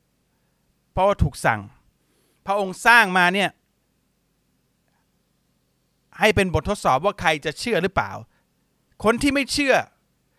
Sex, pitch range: male, 125-170 Hz